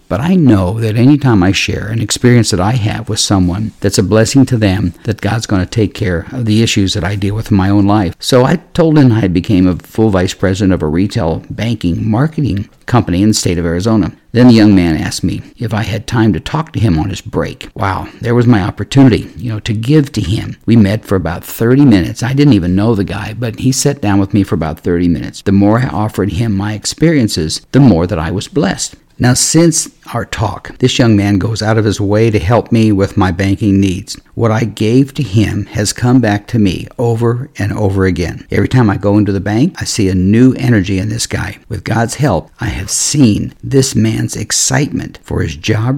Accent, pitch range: American, 100-120 Hz